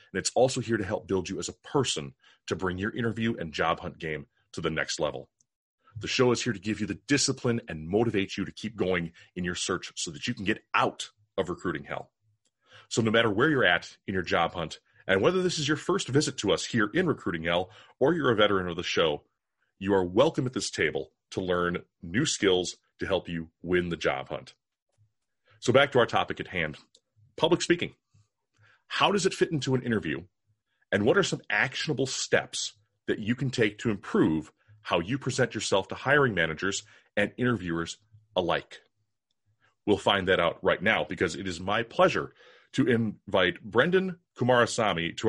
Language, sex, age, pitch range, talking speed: English, male, 30-49, 95-135 Hz, 200 wpm